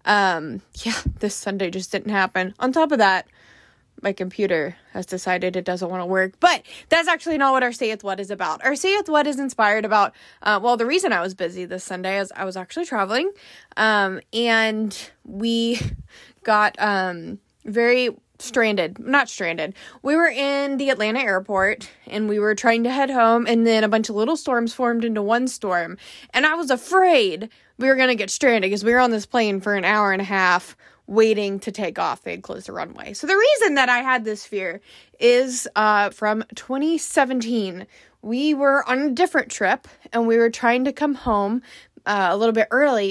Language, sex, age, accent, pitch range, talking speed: English, female, 20-39, American, 200-260 Hz, 200 wpm